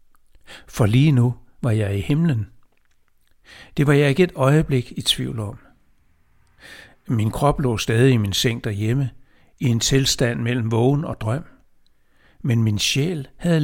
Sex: male